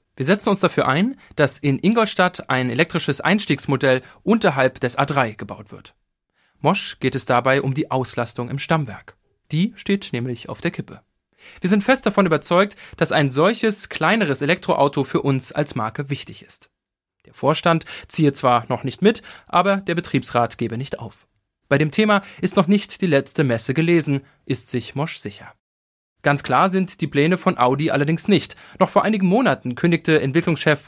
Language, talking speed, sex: German, 175 wpm, male